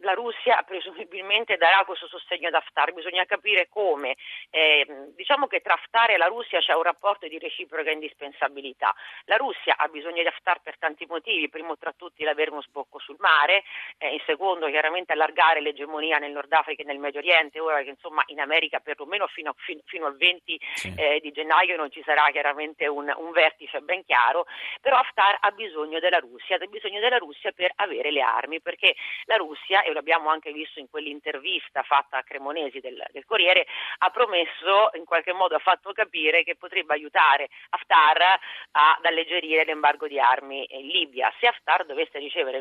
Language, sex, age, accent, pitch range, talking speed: Italian, female, 40-59, native, 150-195 Hz, 185 wpm